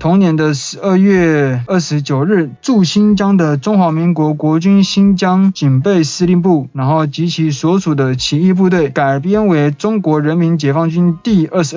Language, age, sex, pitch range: Chinese, 20-39, male, 135-180 Hz